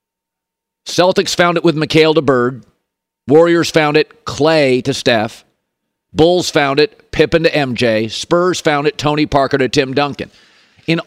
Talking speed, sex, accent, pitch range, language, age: 150 wpm, male, American, 145-175 Hz, English, 50-69